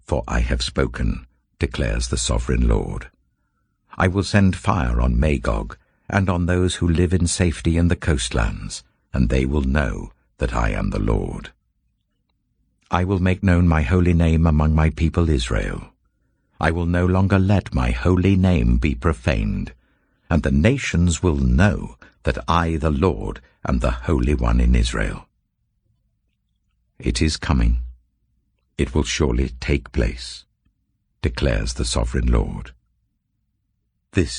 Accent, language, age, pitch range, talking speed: British, English, 60-79, 65-90 Hz, 145 wpm